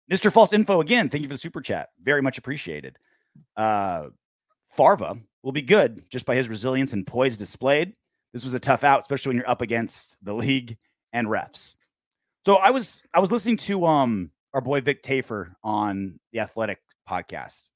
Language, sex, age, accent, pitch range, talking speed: English, male, 30-49, American, 125-190 Hz, 185 wpm